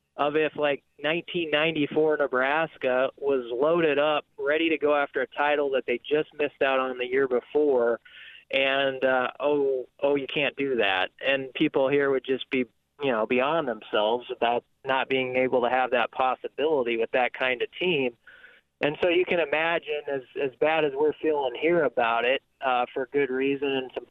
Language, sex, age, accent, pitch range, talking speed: English, male, 20-39, American, 130-165 Hz, 185 wpm